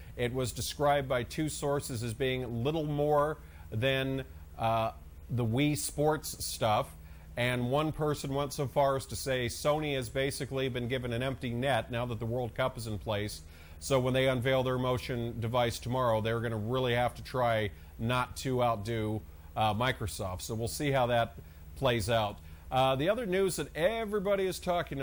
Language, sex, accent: English, male, American